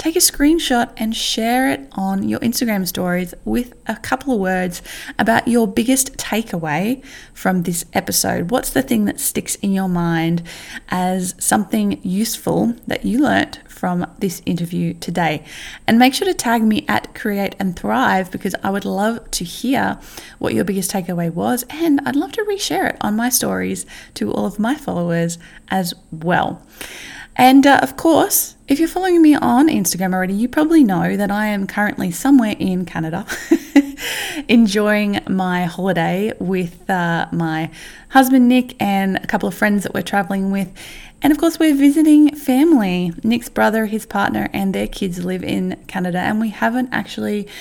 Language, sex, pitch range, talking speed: English, female, 180-245 Hz, 170 wpm